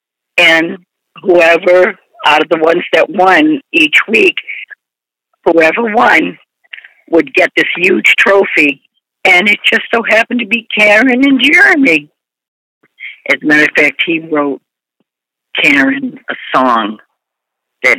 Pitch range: 160-265 Hz